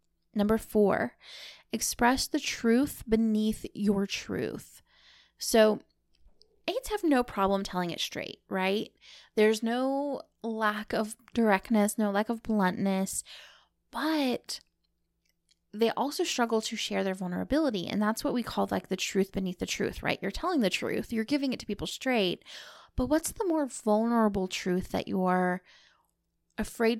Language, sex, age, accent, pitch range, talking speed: English, female, 20-39, American, 195-245 Hz, 145 wpm